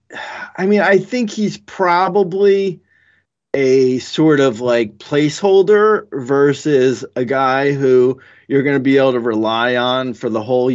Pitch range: 120-170 Hz